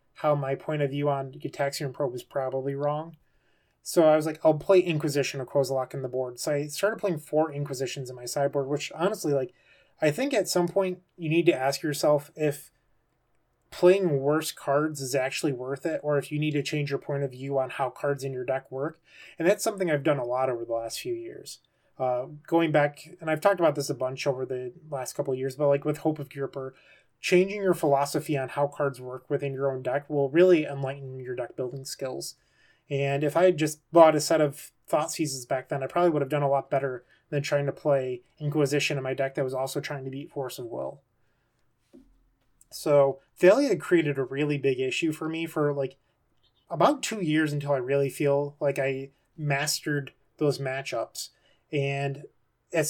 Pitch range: 135-155 Hz